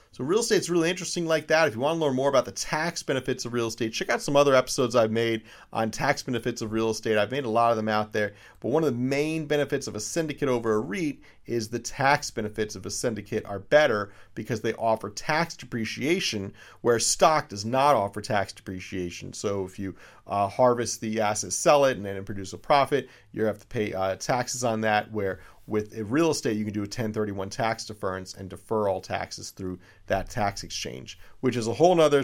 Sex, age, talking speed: male, 40-59, 230 wpm